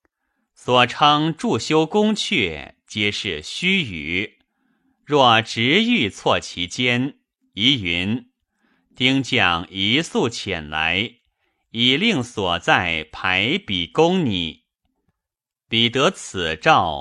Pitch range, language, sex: 90-140 Hz, Chinese, male